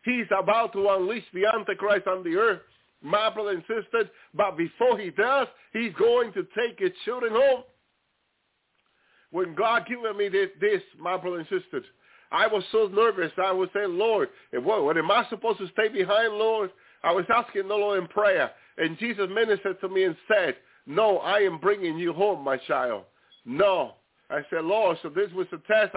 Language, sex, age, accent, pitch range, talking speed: English, male, 50-69, American, 190-230 Hz, 185 wpm